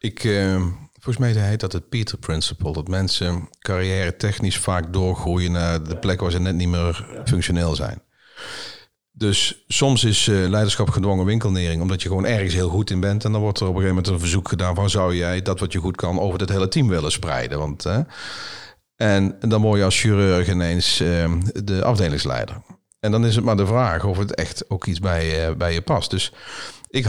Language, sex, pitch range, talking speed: Dutch, male, 85-105 Hz, 215 wpm